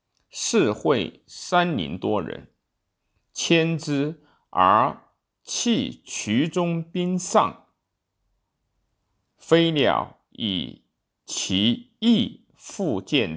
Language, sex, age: Chinese, male, 50-69